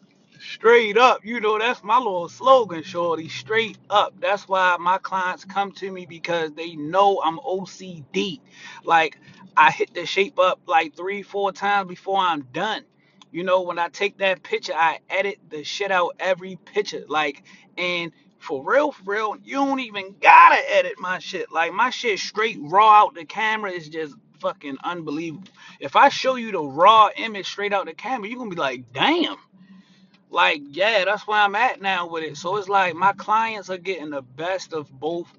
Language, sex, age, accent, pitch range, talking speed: English, male, 30-49, American, 170-210 Hz, 190 wpm